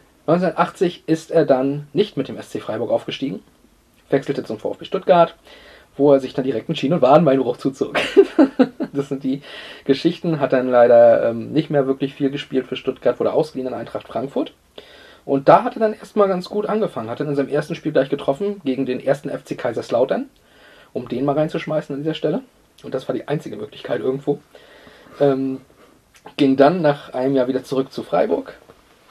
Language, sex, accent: German, male, German